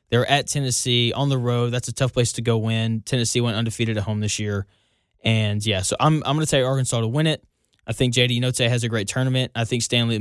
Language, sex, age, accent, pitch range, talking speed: English, male, 10-29, American, 115-135 Hz, 270 wpm